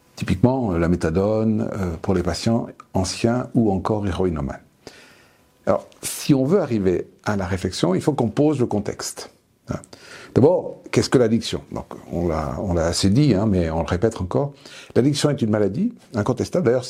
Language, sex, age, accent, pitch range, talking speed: French, male, 60-79, French, 100-145 Hz, 170 wpm